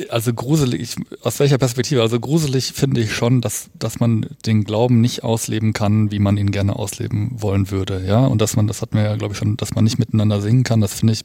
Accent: German